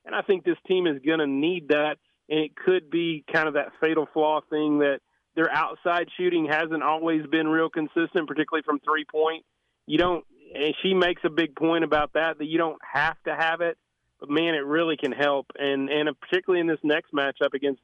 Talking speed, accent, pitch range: 215 wpm, American, 140-160 Hz